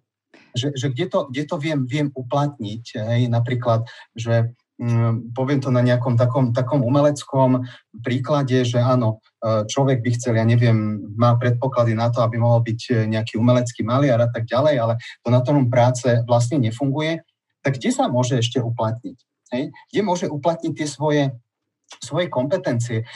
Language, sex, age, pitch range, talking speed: Slovak, male, 30-49, 120-145 Hz, 160 wpm